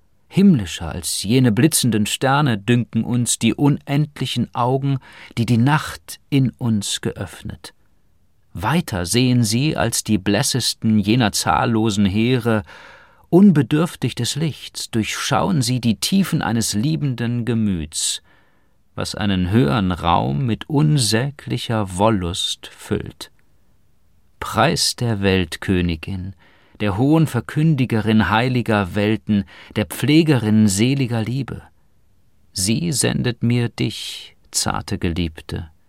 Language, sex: German, male